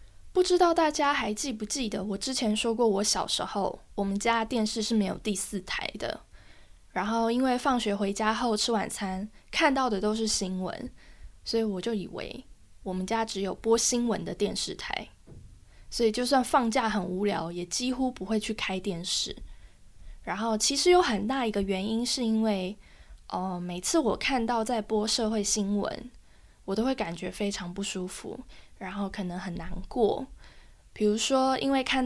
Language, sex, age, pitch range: Chinese, female, 10-29, 205-255 Hz